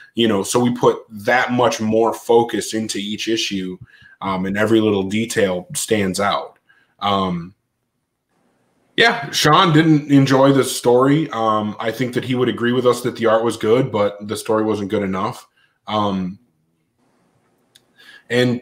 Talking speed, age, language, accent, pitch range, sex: 155 wpm, 20-39, English, American, 110-130 Hz, male